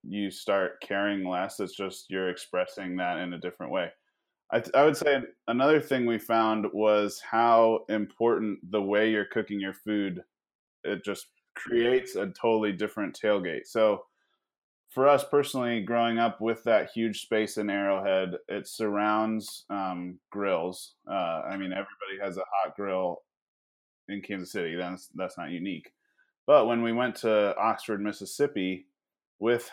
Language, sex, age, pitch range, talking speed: English, male, 20-39, 95-110 Hz, 155 wpm